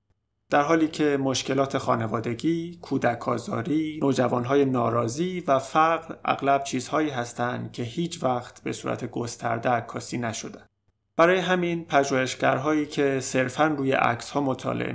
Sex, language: male, Persian